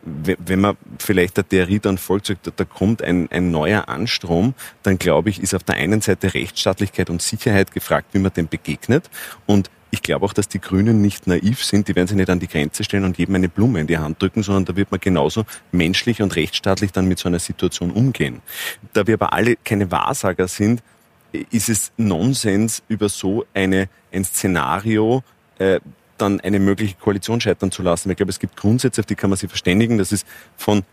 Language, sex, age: German, male, 30-49